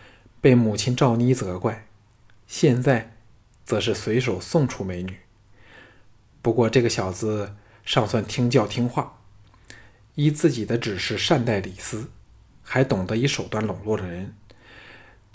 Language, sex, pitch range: Chinese, male, 105-125 Hz